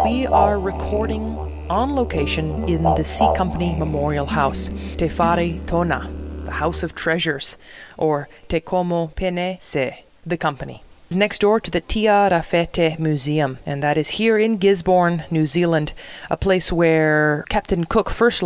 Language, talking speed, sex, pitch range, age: English, 155 wpm, female, 145-185 Hz, 20-39